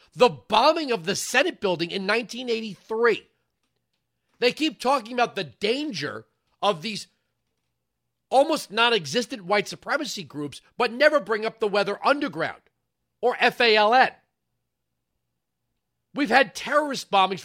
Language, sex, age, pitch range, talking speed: English, male, 40-59, 180-245 Hz, 115 wpm